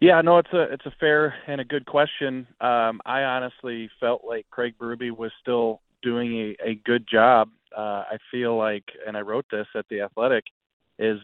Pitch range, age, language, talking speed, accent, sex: 110-125 Hz, 30-49, English, 190 wpm, American, male